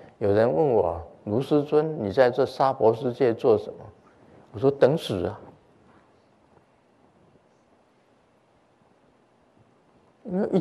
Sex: male